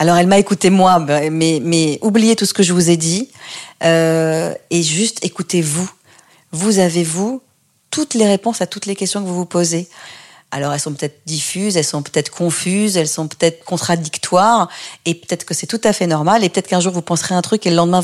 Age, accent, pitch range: 40-59, French, 165-200 Hz